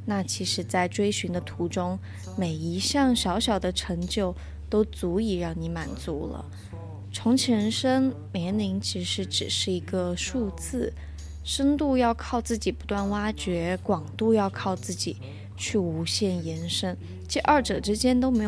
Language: Chinese